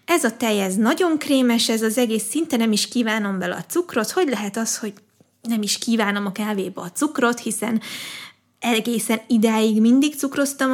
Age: 20-39